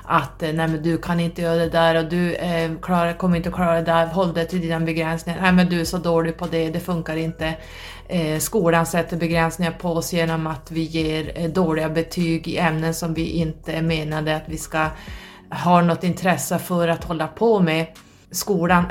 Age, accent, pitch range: 30-49, native, 160-175 Hz